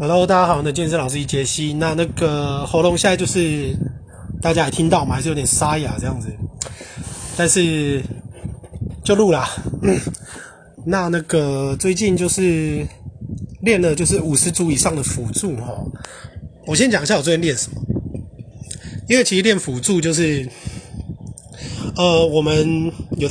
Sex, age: male, 20-39